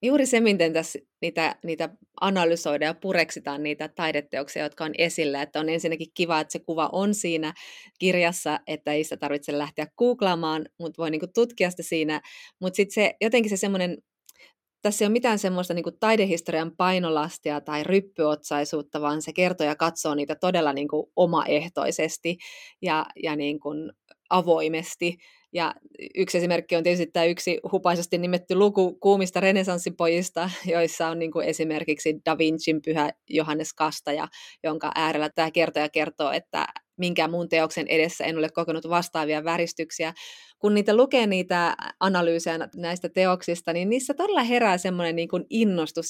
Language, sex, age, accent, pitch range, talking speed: Finnish, female, 30-49, native, 160-185 Hz, 145 wpm